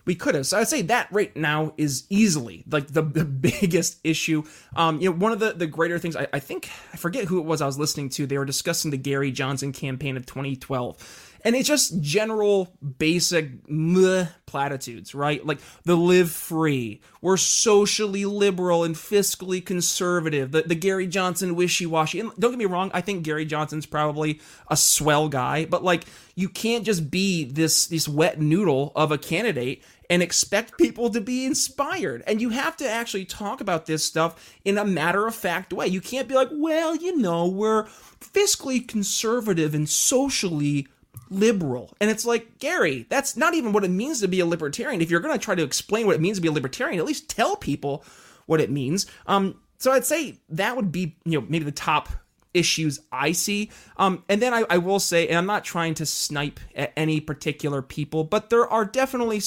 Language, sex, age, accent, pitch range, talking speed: English, male, 20-39, American, 155-210 Hz, 200 wpm